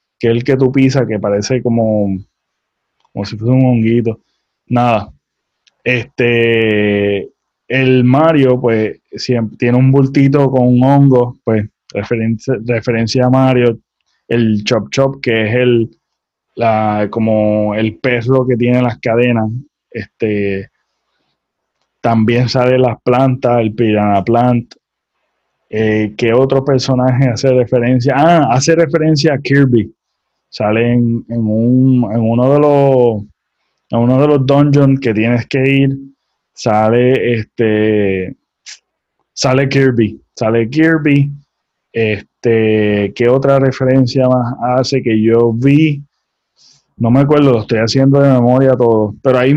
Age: 20-39